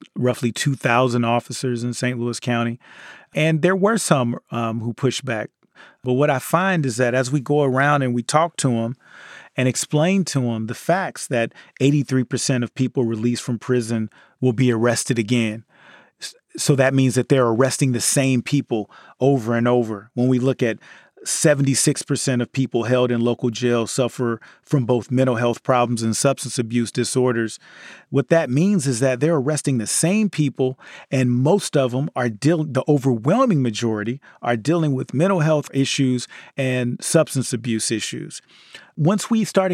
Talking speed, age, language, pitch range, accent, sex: 170 wpm, 30-49, English, 120-155 Hz, American, male